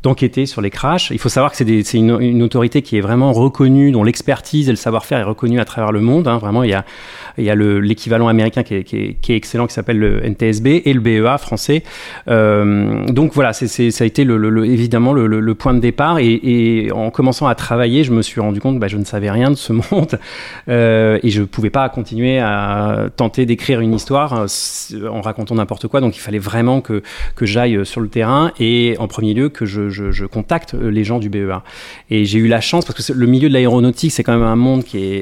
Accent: French